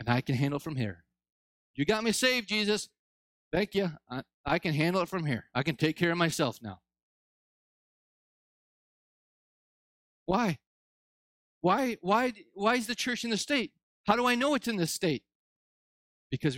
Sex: male